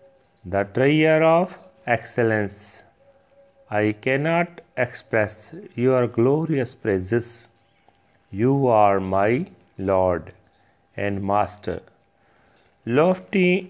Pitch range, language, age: 115-135 Hz, Punjabi, 40-59